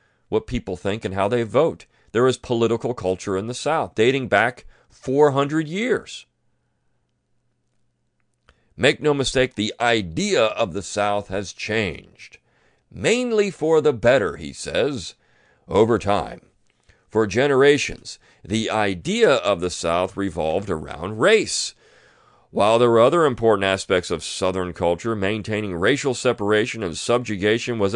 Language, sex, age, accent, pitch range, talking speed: English, male, 40-59, American, 90-120 Hz, 130 wpm